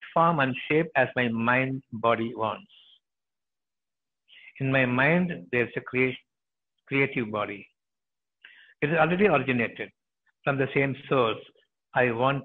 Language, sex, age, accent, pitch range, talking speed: Tamil, male, 60-79, native, 115-145 Hz, 125 wpm